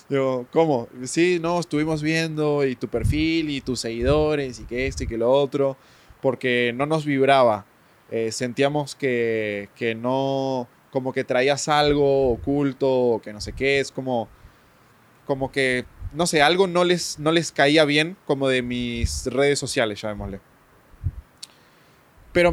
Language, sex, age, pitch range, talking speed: Spanish, male, 20-39, 125-150 Hz, 150 wpm